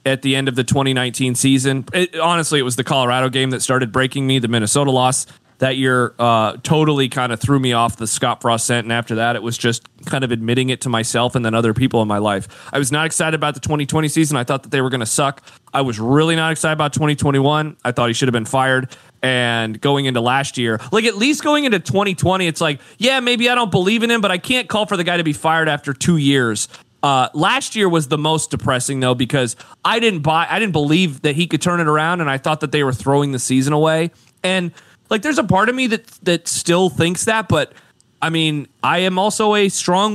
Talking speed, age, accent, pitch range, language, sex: 250 wpm, 30-49, American, 125-175 Hz, English, male